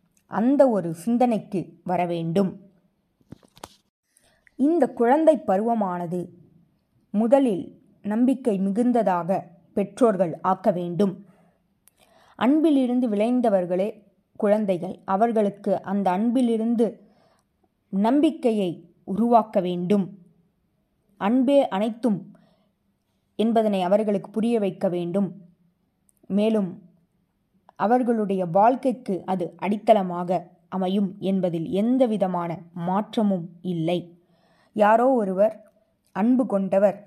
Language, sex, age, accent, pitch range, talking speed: Tamil, female, 20-39, native, 180-225 Hz, 70 wpm